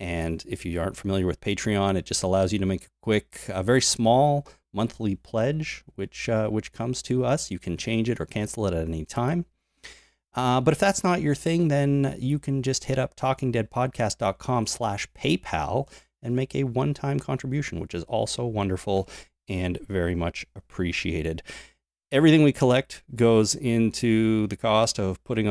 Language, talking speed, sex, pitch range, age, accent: English, 170 wpm, male, 95-130 Hz, 30-49, American